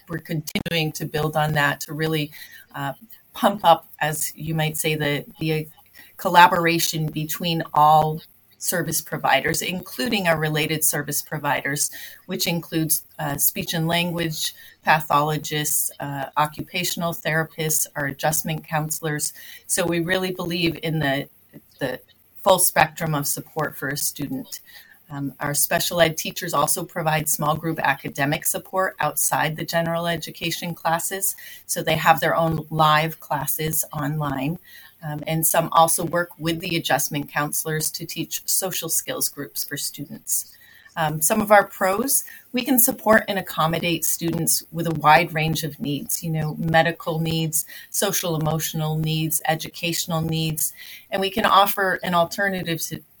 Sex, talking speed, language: female, 145 wpm, English